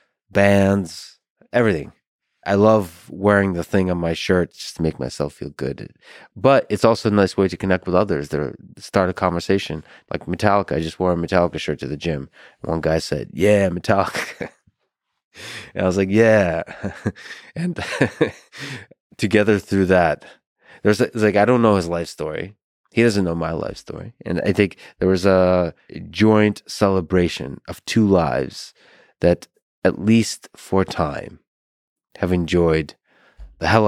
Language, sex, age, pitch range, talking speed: English, male, 20-39, 85-105 Hz, 160 wpm